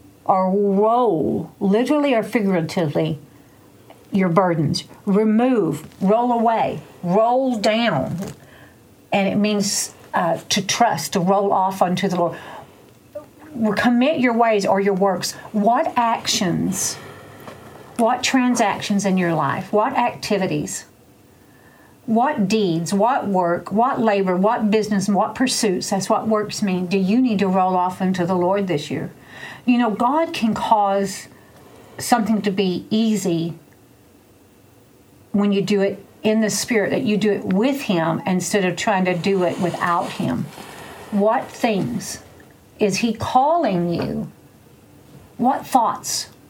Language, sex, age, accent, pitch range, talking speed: English, female, 50-69, American, 190-230 Hz, 130 wpm